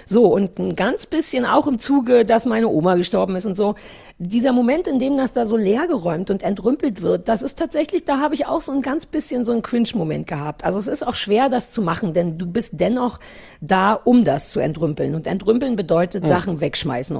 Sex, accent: female, German